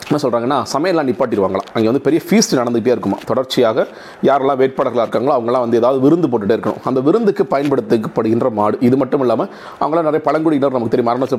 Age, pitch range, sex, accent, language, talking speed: 30-49, 120-155 Hz, male, native, Tamil, 170 wpm